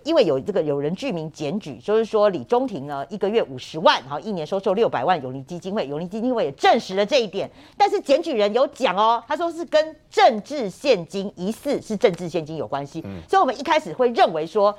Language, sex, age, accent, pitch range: Chinese, female, 50-69, American, 180-285 Hz